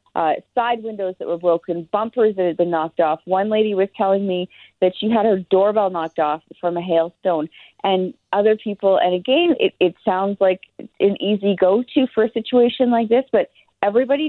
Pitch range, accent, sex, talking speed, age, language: 180-225 Hz, American, female, 200 wpm, 40-59, English